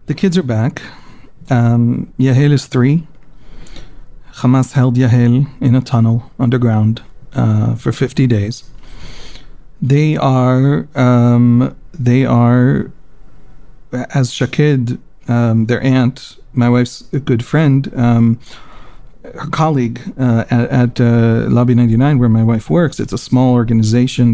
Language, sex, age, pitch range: English, male, 40-59, 115-130 Hz